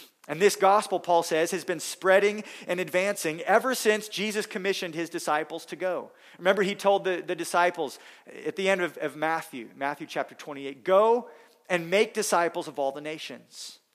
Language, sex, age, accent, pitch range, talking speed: English, male, 40-59, American, 155-195 Hz, 175 wpm